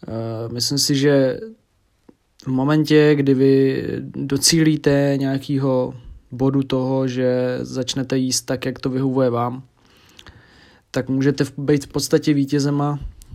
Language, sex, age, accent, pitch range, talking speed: Czech, male, 20-39, native, 125-140 Hz, 110 wpm